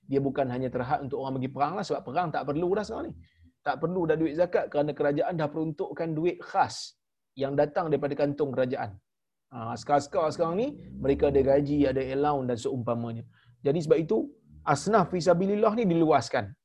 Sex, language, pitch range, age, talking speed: male, Malayalam, 135-200 Hz, 30-49, 175 wpm